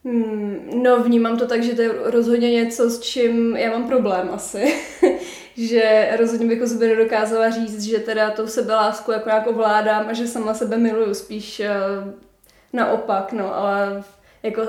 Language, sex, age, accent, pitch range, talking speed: Czech, female, 20-39, native, 215-235 Hz, 165 wpm